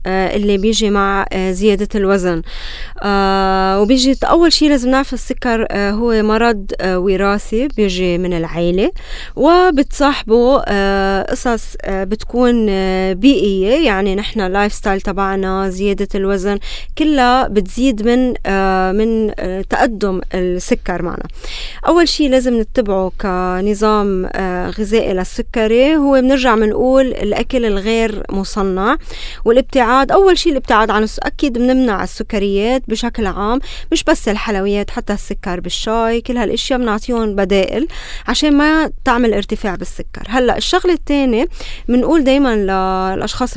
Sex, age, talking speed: female, 20-39, 125 wpm